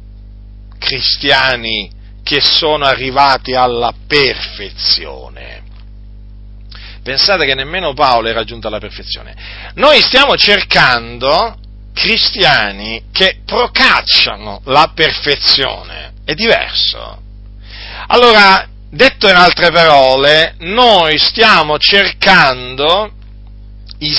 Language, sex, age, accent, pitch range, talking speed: Italian, male, 40-59, native, 100-170 Hz, 80 wpm